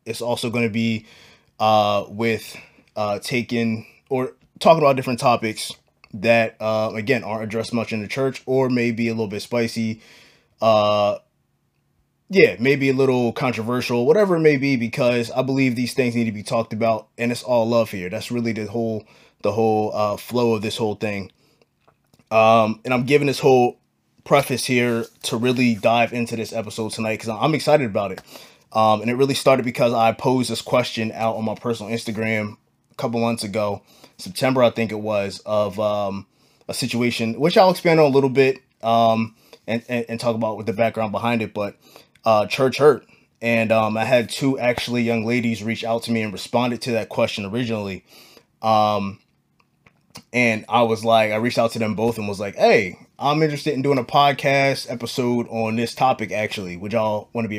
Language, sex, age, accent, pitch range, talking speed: English, male, 20-39, American, 110-125 Hz, 195 wpm